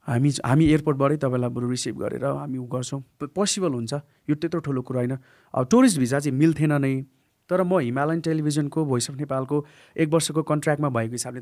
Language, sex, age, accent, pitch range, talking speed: English, male, 30-49, Indian, 125-150 Hz, 75 wpm